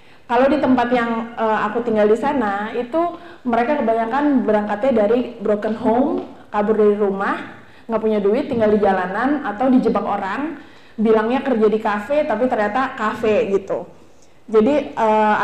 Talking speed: 150 wpm